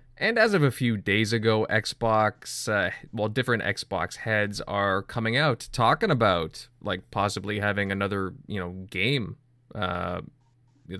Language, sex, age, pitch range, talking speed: English, male, 20-39, 100-120 Hz, 140 wpm